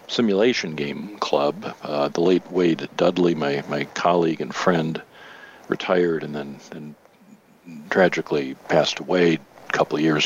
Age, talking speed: 50-69, 140 wpm